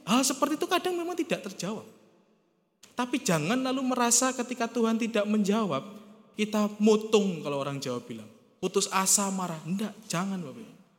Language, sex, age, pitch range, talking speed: Indonesian, male, 20-39, 180-230 Hz, 145 wpm